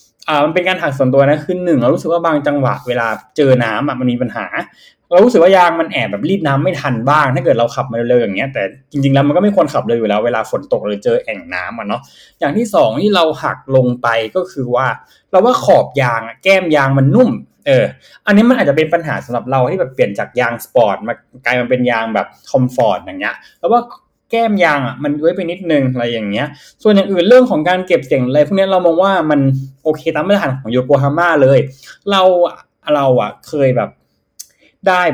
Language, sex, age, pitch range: Thai, male, 20-39, 125-180 Hz